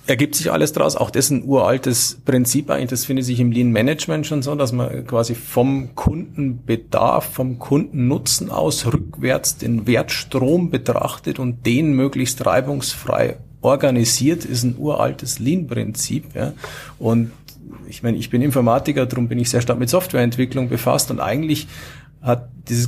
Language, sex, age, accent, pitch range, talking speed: German, male, 50-69, Austrian, 115-140 Hz, 155 wpm